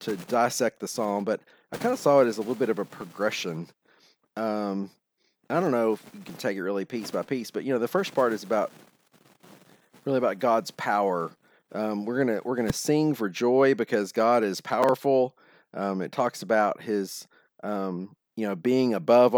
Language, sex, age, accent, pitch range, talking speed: English, male, 40-59, American, 100-125 Hz, 205 wpm